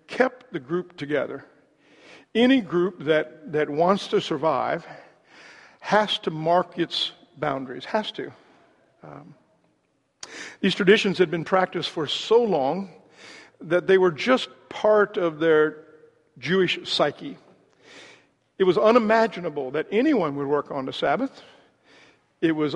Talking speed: 125 wpm